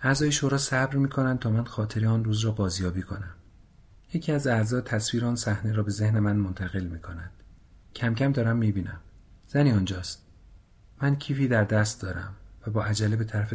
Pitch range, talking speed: 95-120 Hz, 180 wpm